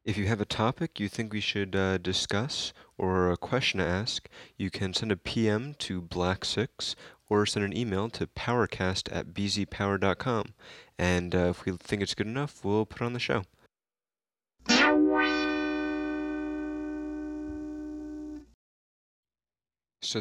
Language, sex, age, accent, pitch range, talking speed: English, male, 20-39, American, 95-110 Hz, 135 wpm